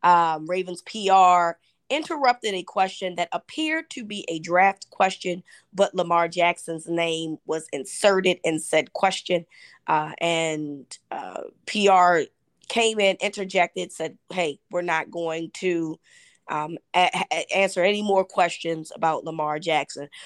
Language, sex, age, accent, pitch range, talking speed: English, female, 20-39, American, 165-195 Hz, 135 wpm